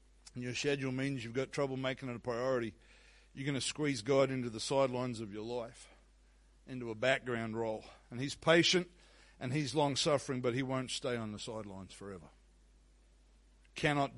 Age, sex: 60-79, male